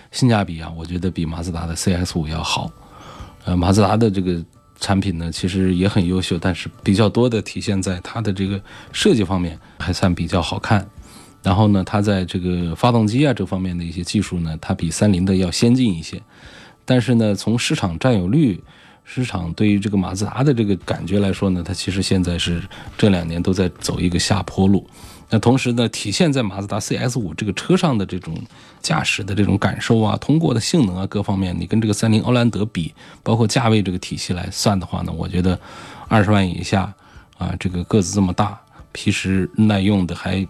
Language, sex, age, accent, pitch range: Chinese, male, 20-39, native, 90-110 Hz